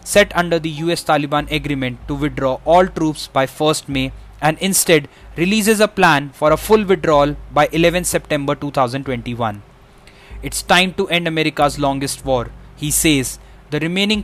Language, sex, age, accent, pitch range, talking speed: English, male, 20-39, Indian, 135-165 Hz, 150 wpm